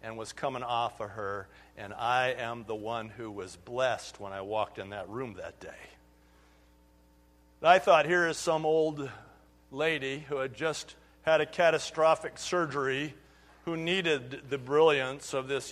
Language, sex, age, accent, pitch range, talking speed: English, male, 50-69, American, 100-150 Hz, 160 wpm